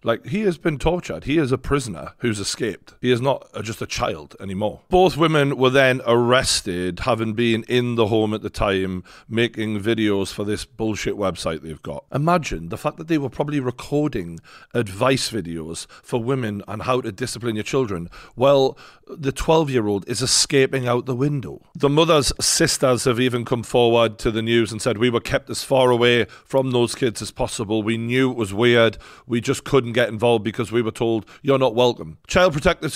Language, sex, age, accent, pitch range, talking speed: English, male, 40-59, British, 110-140 Hz, 195 wpm